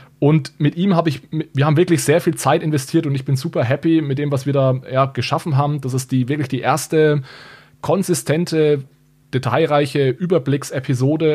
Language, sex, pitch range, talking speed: German, male, 125-145 Hz, 180 wpm